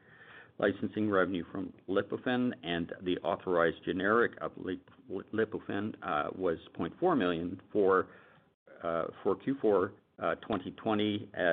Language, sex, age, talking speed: English, male, 50-69, 105 wpm